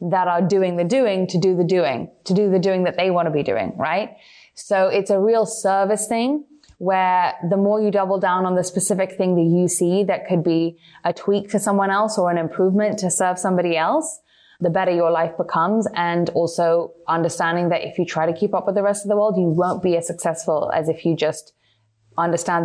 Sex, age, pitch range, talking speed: female, 20-39, 170-205 Hz, 225 wpm